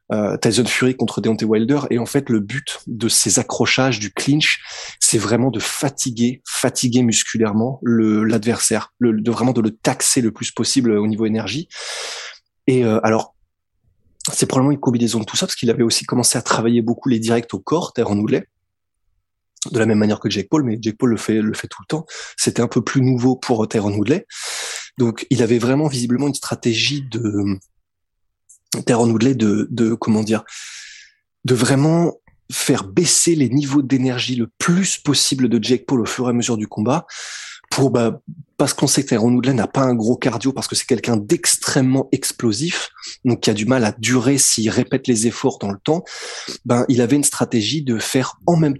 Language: French